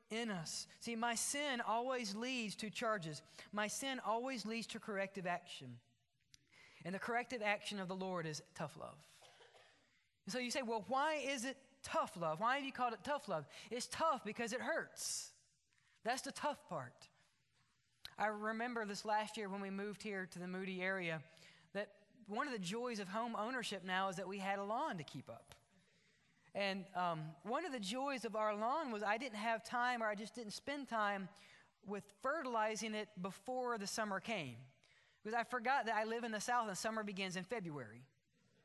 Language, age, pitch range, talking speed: English, 20-39, 195-240 Hz, 190 wpm